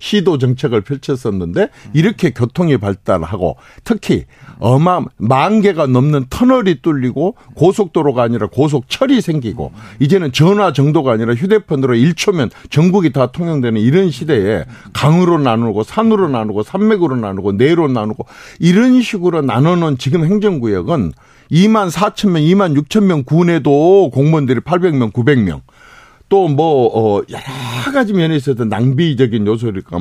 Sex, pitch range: male, 115-180 Hz